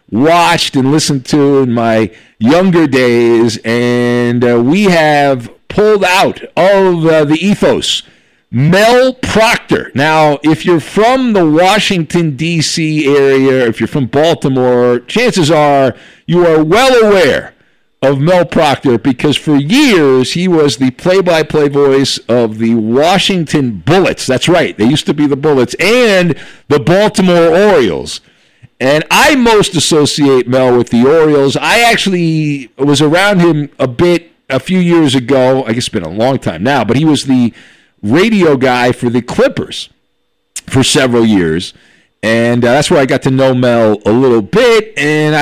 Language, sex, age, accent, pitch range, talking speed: English, male, 50-69, American, 130-175 Hz, 155 wpm